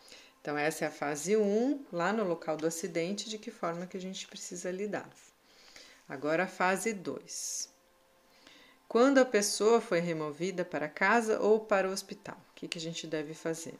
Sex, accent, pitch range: female, Brazilian, 170-210 Hz